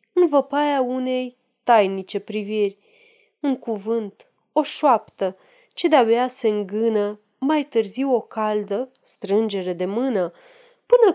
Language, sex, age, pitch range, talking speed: Romanian, female, 30-49, 200-275 Hz, 115 wpm